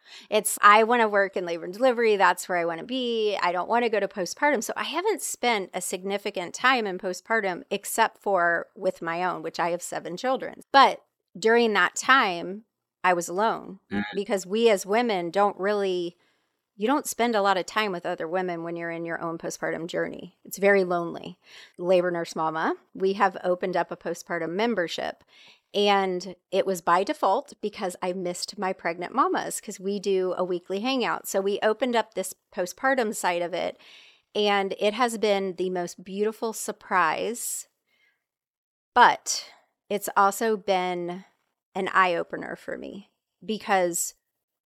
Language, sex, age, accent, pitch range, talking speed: English, female, 30-49, American, 180-215 Hz, 170 wpm